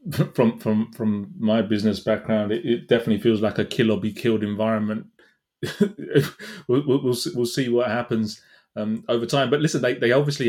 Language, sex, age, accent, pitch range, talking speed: English, male, 30-49, British, 110-125 Hz, 175 wpm